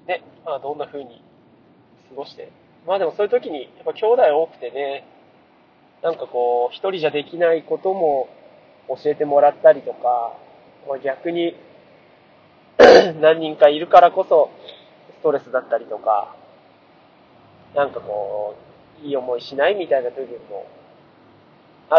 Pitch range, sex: 140-205 Hz, male